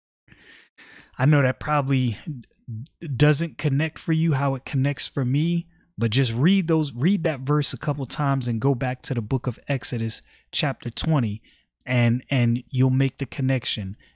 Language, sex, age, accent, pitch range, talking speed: English, male, 30-49, American, 115-145 Hz, 165 wpm